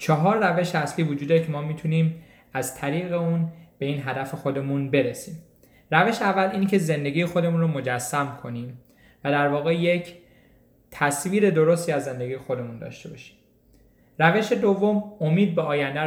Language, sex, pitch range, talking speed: Persian, male, 145-180 Hz, 150 wpm